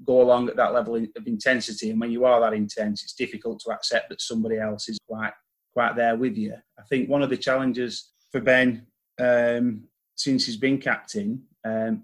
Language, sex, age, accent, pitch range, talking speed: English, male, 30-49, British, 110-130 Hz, 200 wpm